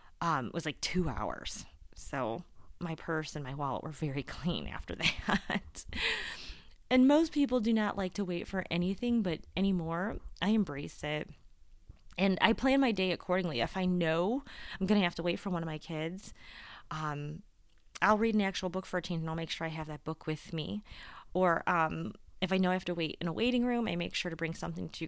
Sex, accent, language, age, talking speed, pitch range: female, American, English, 30-49, 215 wpm, 160-205 Hz